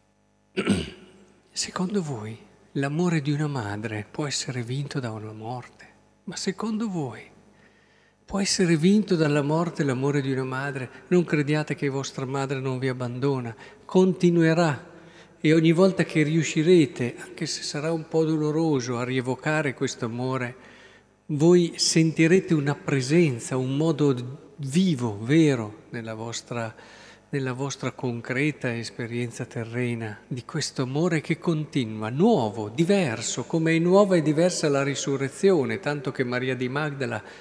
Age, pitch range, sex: 50-69, 130-170 Hz, male